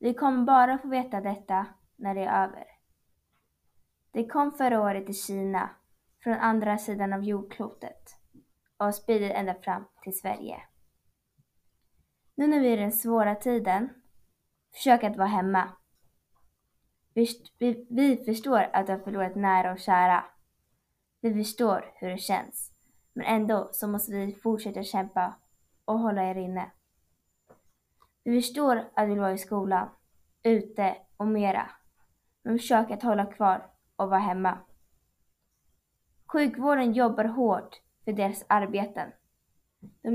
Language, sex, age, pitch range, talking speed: Swedish, female, 20-39, 195-235 Hz, 135 wpm